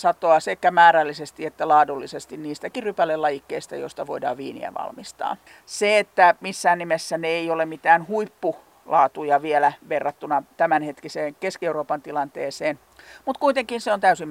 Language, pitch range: Finnish, 155-210 Hz